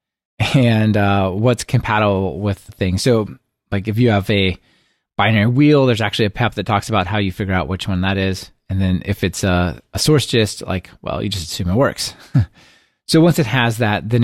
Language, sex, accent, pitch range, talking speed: English, male, American, 100-125 Hz, 215 wpm